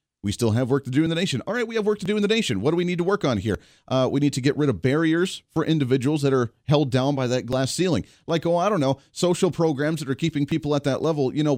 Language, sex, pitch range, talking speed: English, male, 125-165 Hz, 315 wpm